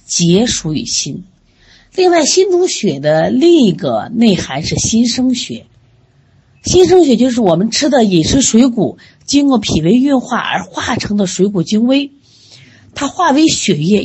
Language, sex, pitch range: Chinese, female, 155-250 Hz